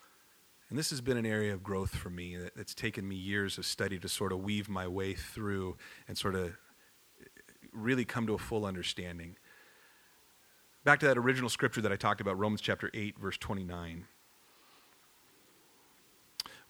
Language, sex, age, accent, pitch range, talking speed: English, male, 40-59, American, 95-125 Hz, 165 wpm